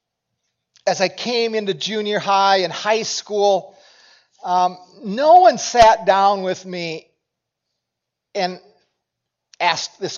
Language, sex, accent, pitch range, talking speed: English, male, American, 190-245 Hz, 110 wpm